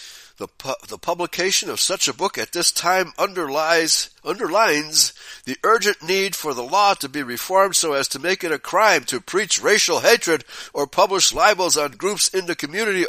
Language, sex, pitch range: English, male, 130-195 Hz